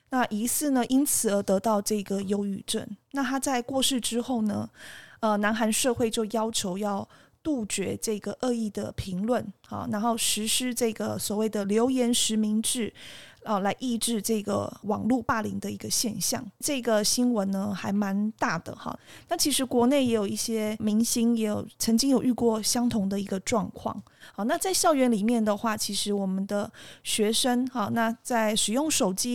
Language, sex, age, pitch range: Chinese, female, 20-39, 210-245 Hz